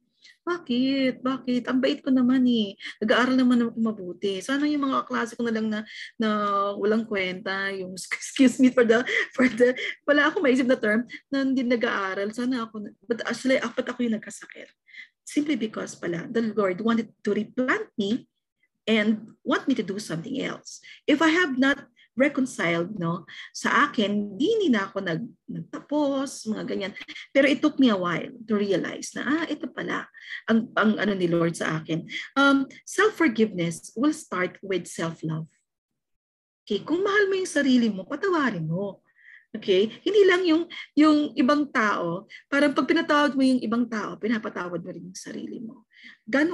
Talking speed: 170 wpm